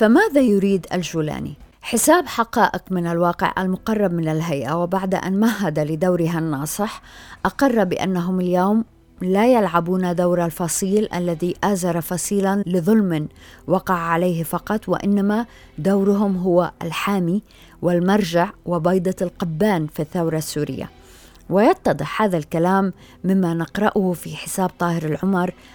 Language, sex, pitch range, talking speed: Arabic, female, 170-195 Hz, 110 wpm